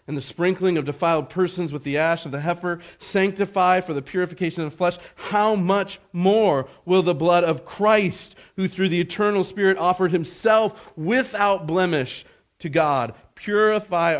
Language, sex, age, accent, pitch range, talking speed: English, male, 40-59, American, 110-175 Hz, 165 wpm